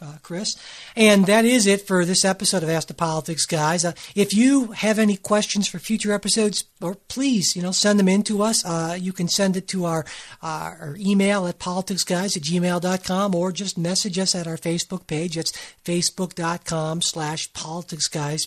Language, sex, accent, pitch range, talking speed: English, male, American, 165-205 Hz, 190 wpm